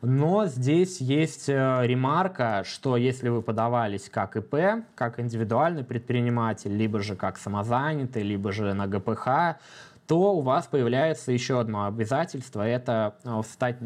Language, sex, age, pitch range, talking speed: Russian, male, 20-39, 105-130 Hz, 130 wpm